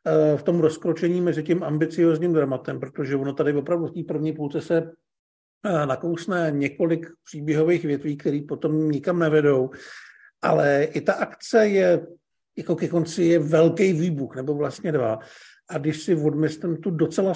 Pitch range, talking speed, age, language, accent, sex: 140-165 Hz, 150 wpm, 50-69, Czech, native, male